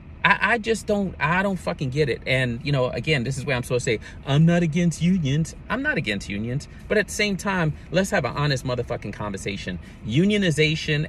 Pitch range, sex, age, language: 105-150 Hz, male, 30-49, English